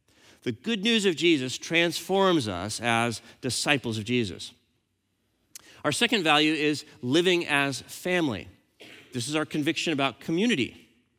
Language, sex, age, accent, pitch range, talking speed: English, male, 40-59, American, 115-175 Hz, 130 wpm